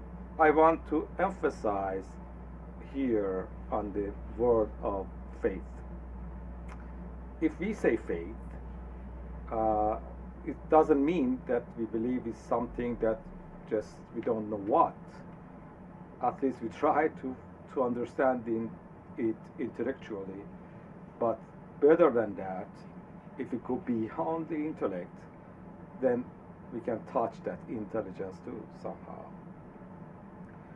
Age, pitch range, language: 50-69, 105-160 Hz, Persian